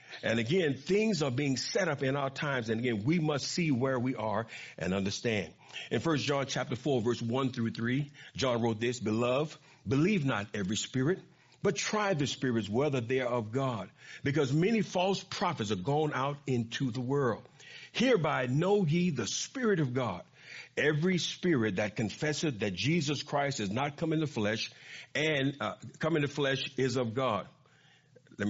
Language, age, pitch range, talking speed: English, 50-69, 120-155 Hz, 180 wpm